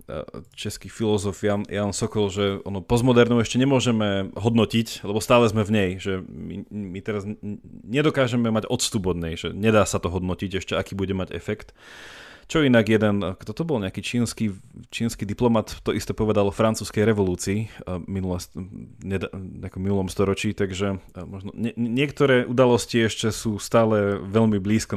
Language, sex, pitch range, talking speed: Slovak, male, 95-115 Hz, 140 wpm